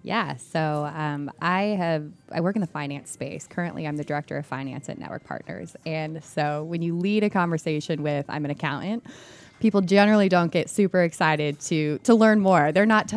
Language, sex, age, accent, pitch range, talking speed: English, female, 20-39, American, 145-175 Hz, 195 wpm